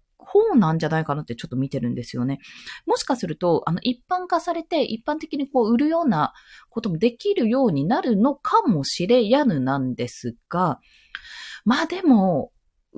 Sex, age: female, 20-39